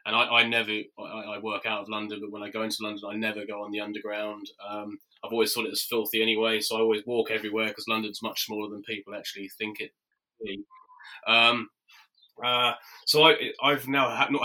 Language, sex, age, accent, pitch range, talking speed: English, male, 20-39, British, 110-135 Hz, 205 wpm